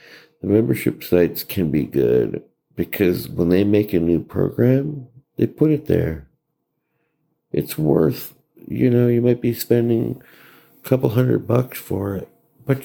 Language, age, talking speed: English, 60-79, 150 wpm